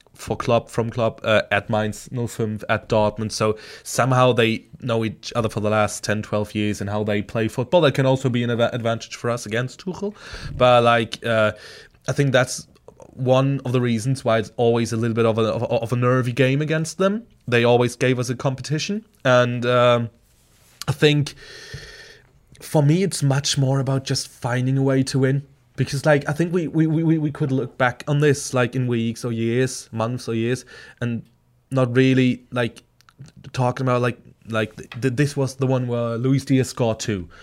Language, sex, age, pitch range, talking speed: English, male, 20-39, 115-135 Hz, 195 wpm